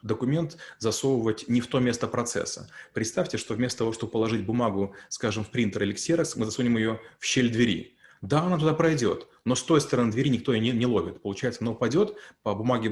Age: 30-49